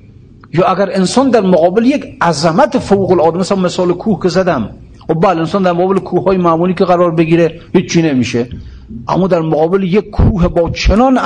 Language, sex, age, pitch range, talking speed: Persian, male, 50-69, 125-195 Hz, 170 wpm